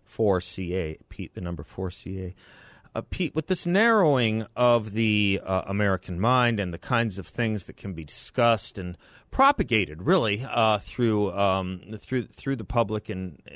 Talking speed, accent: 175 wpm, American